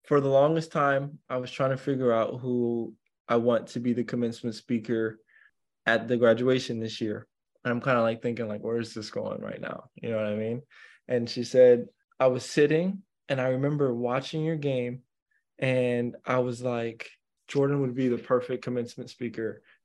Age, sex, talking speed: 20-39, male, 195 wpm